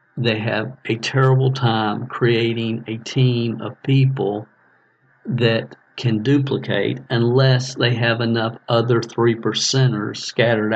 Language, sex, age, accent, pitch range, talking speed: English, male, 50-69, American, 110-125 Hz, 110 wpm